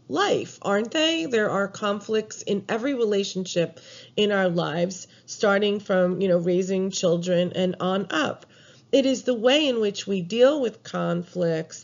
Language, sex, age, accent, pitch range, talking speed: English, female, 40-59, American, 180-235 Hz, 155 wpm